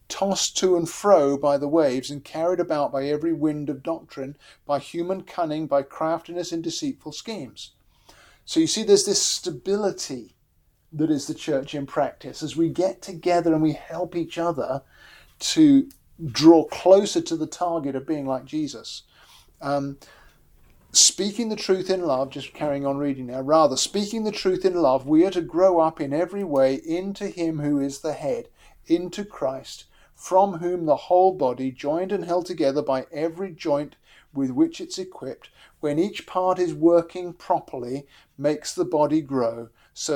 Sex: male